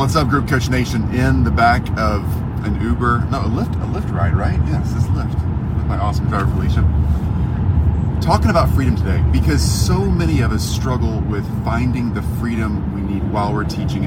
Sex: male